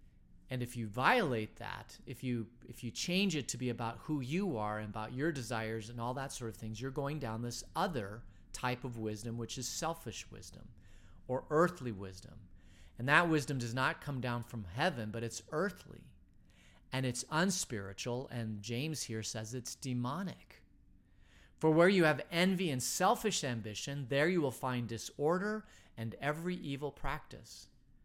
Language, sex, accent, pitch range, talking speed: English, male, American, 110-150 Hz, 170 wpm